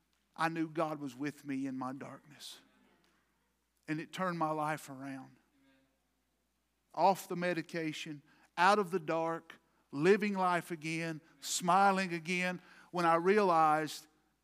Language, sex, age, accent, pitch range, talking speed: English, male, 50-69, American, 165-250 Hz, 125 wpm